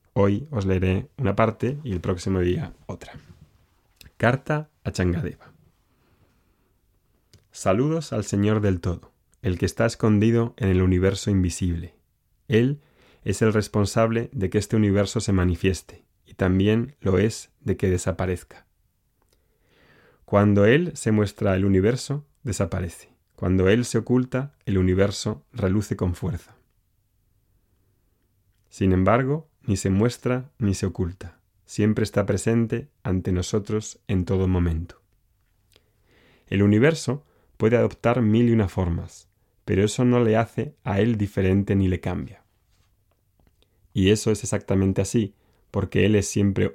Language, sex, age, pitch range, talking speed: Spanish, male, 30-49, 95-115 Hz, 130 wpm